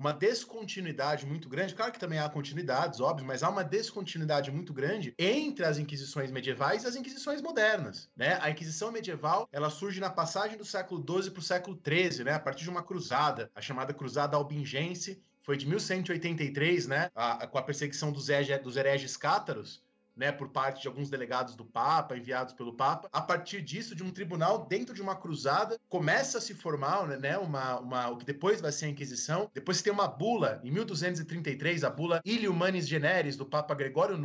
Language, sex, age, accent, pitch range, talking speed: Portuguese, male, 20-39, Brazilian, 145-200 Hz, 185 wpm